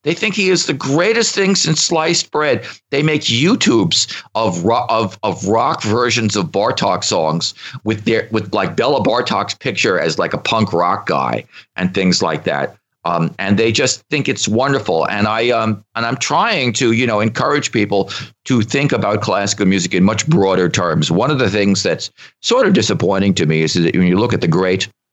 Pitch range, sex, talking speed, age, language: 85-115 Hz, male, 200 wpm, 50-69, English